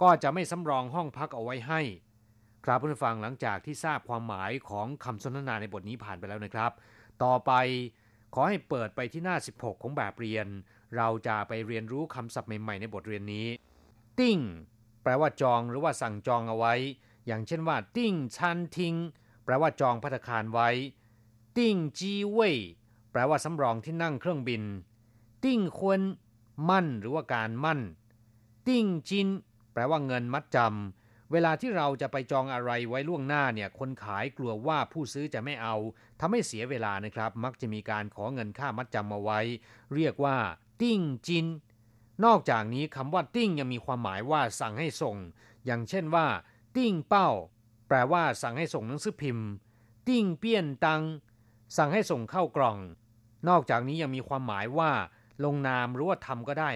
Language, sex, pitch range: Thai, male, 115-155 Hz